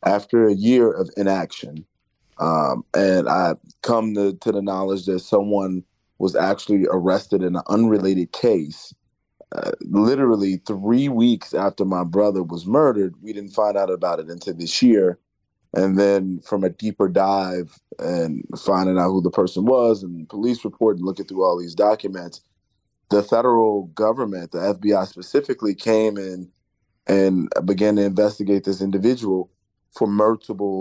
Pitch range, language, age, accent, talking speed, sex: 95-110 Hz, English, 30-49, American, 150 wpm, male